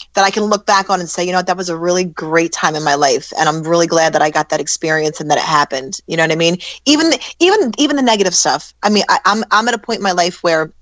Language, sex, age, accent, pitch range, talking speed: English, female, 30-49, American, 160-190 Hz, 305 wpm